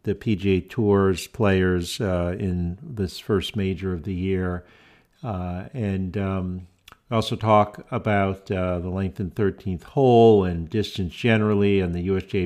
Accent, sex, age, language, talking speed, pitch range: American, male, 50-69, English, 145 wpm, 95-105 Hz